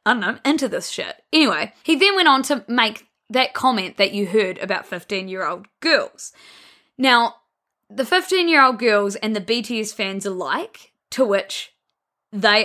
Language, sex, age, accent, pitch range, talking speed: English, female, 10-29, Australian, 205-260 Hz, 155 wpm